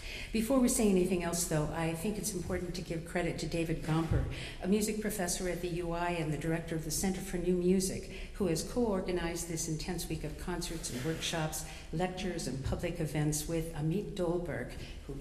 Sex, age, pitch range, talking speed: female, 50-69, 155-185 Hz, 195 wpm